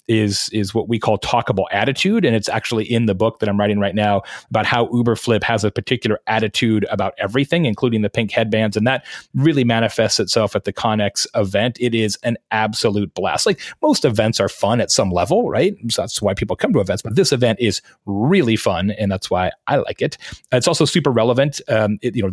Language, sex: English, male